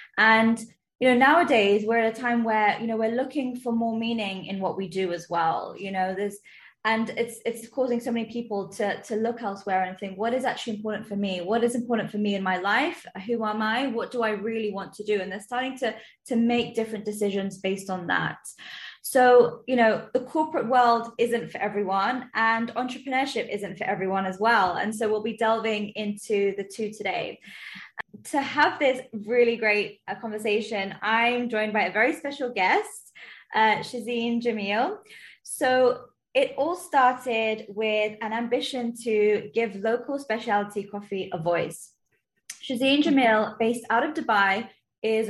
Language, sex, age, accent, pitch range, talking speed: English, female, 20-39, British, 205-240 Hz, 180 wpm